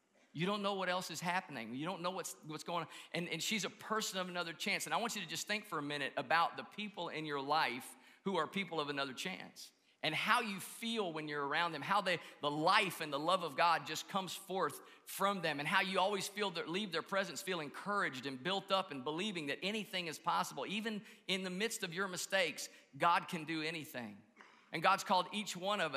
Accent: American